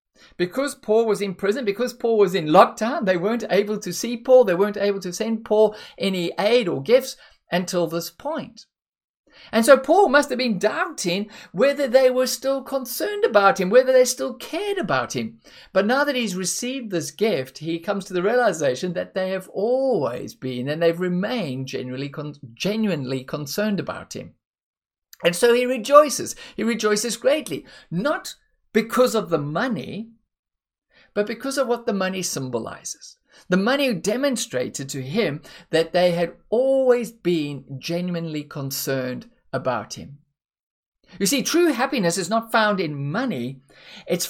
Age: 50-69